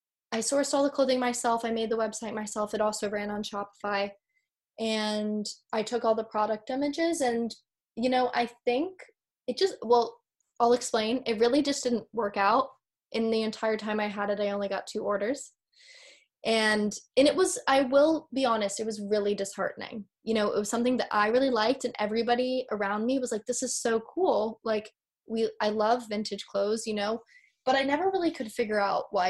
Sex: female